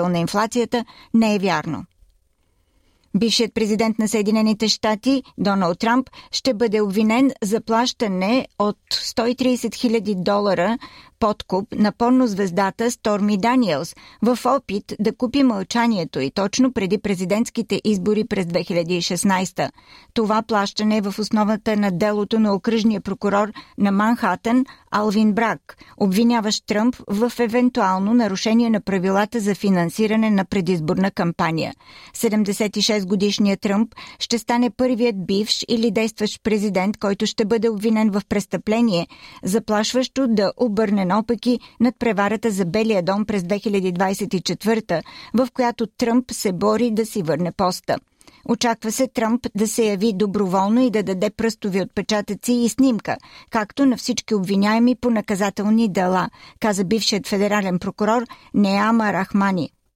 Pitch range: 200-235 Hz